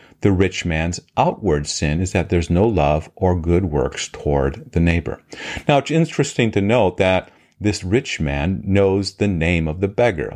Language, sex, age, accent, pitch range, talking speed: English, male, 40-59, American, 80-100 Hz, 180 wpm